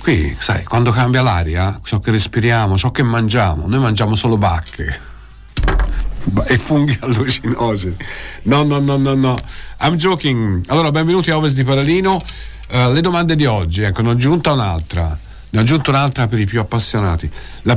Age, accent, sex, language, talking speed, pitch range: 50-69, native, male, Italian, 170 wpm, 95-135 Hz